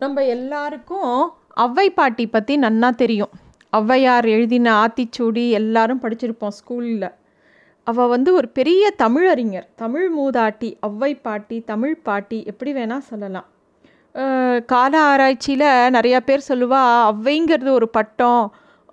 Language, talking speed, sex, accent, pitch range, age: Tamil, 110 wpm, female, native, 225-275 Hz, 30-49